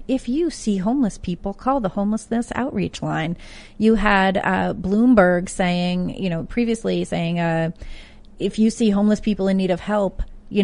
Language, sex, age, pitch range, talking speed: English, female, 30-49, 175-220 Hz, 170 wpm